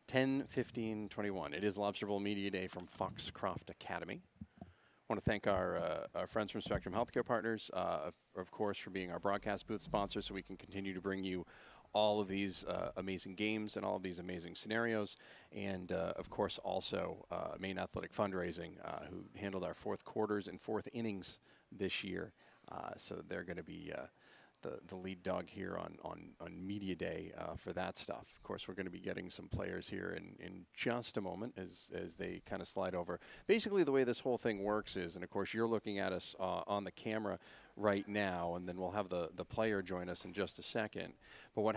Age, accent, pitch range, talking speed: 40-59, American, 95-110 Hz, 210 wpm